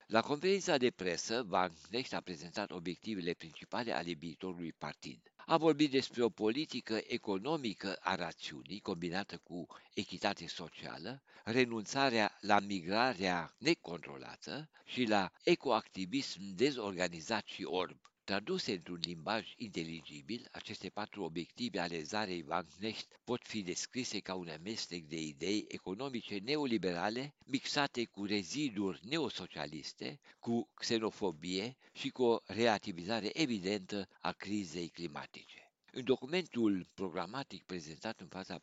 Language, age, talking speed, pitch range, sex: Romanian, 60-79, 115 wpm, 90-125 Hz, male